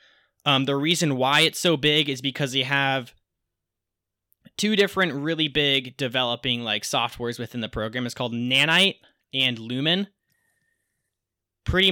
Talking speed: 135 wpm